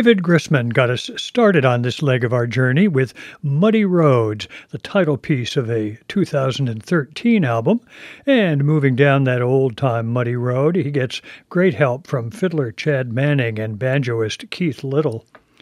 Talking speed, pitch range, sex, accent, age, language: 155 wpm, 130-170 Hz, male, American, 60-79, English